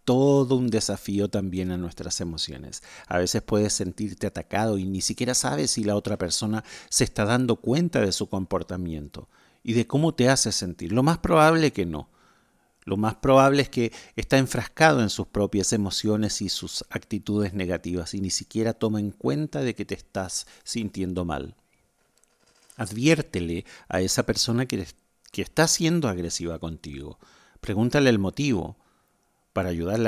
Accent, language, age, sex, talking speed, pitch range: Argentinian, Spanish, 40-59, male, 160 wpm, 95-135 Hz